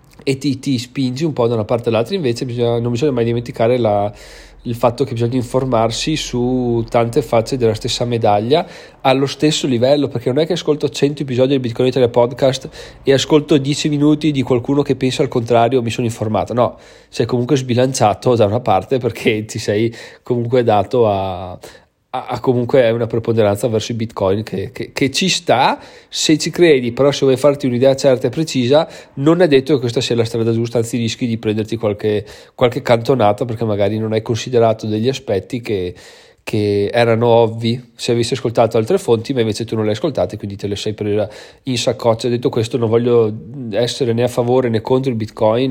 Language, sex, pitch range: Italian, male, 115-135 Hz